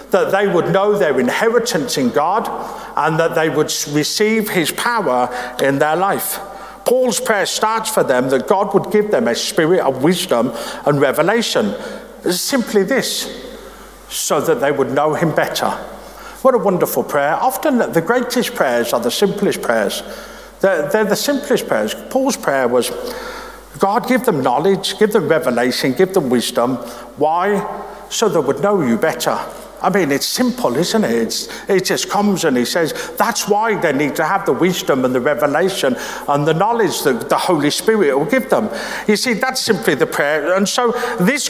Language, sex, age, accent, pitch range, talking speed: English, male, 50-69, British, 165-240 Hz, 175 wpm